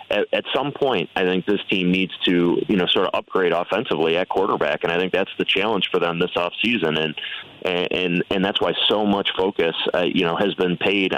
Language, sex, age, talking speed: English, male, 30-49, 225 wpm